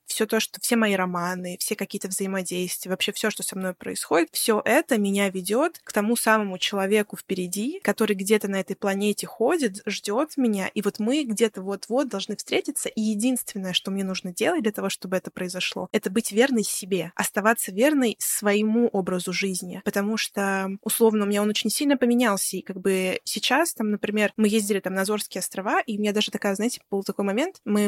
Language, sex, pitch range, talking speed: Russian, female, 195-230 Hz, 190 wpm